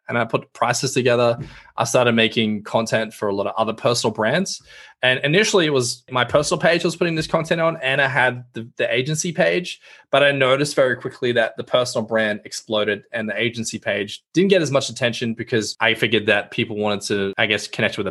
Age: 20-39